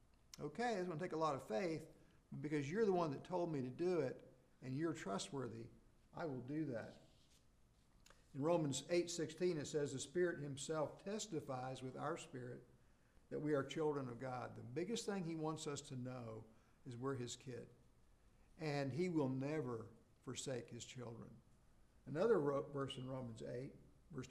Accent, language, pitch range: American, English, 130-180 Hz